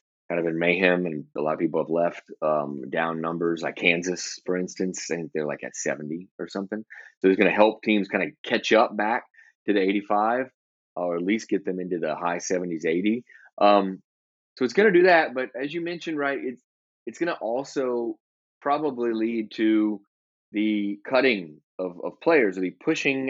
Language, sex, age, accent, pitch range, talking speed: English, male, 30-49, American, 90-120 Hz, 190 wpm